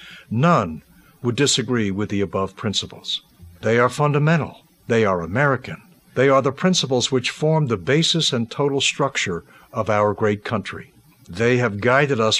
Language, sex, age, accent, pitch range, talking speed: English, male, 60-79, American, 110-145 Hz, 155 wpm